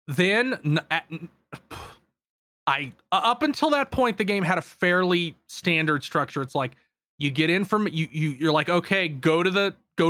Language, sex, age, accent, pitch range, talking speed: English, male, 30-49, American, 150-200 Hz, 170 wpm